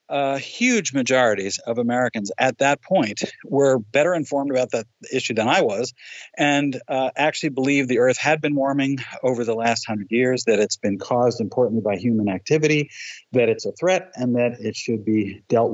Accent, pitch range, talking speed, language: American, 120-145 Hz, 185 wpm, English